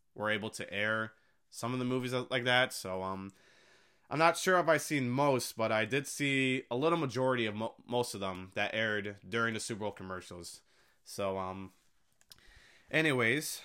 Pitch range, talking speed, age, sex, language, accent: 100-120 Hz, 180 wpm, 20-39, male, English, American